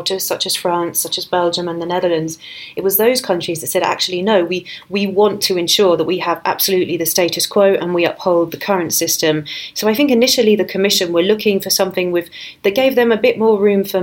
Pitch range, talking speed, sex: 170-195 Hz, 230 wpm, female